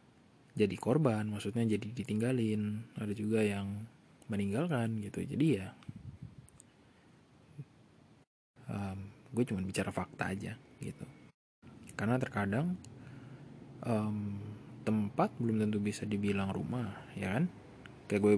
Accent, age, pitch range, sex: native, 20-39, 100-120 Hz, male